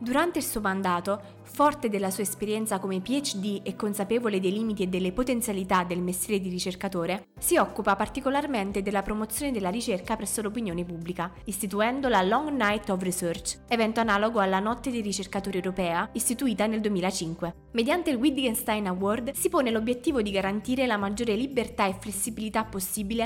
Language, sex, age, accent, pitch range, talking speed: Italian, female, 20-39, native, 185-230 Hz, 160 wpm